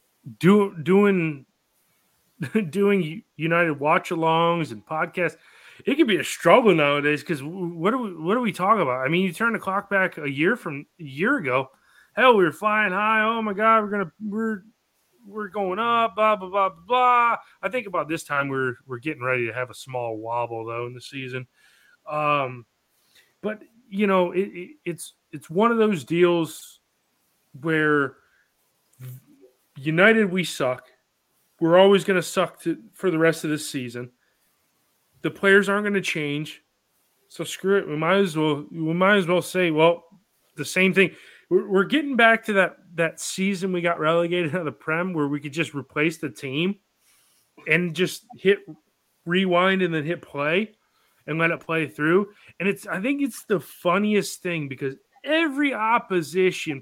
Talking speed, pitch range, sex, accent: 175 wpm, 150-200 Hz, male, American